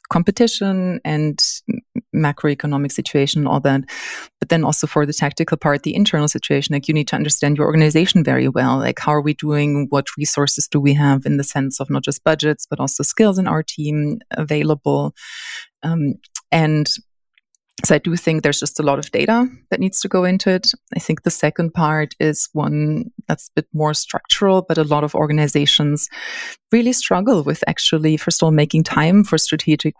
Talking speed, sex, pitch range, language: 190 wpm, female, 145-170 Hz, English